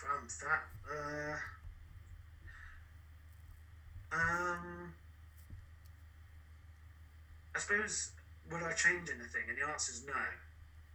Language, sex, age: English, male, 30-49